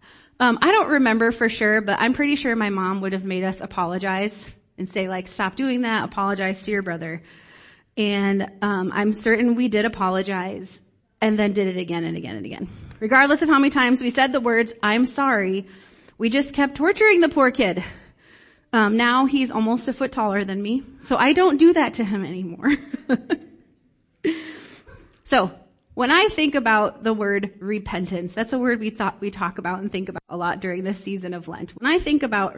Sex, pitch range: female, 190-255 Hz